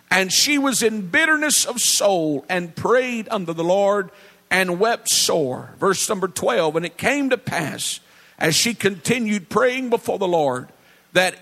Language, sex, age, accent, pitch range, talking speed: English, male, 50-69, American, 175-230 Hz, 165 wpm